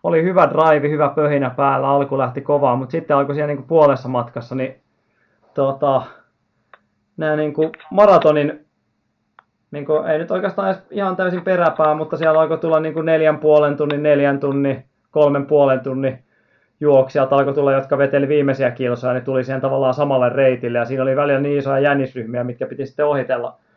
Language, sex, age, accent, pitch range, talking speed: Finnish, male, 30-49, native, 130-150 Hz, 175 wpm